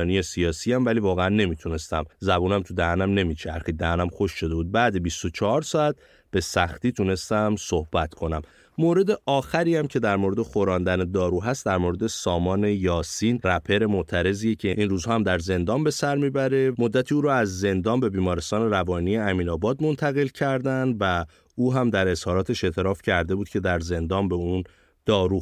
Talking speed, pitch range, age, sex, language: 165 wpm, 85-120 Hz, 30-49, male, Persian